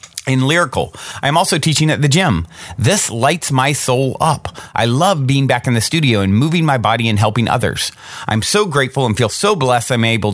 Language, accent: English, American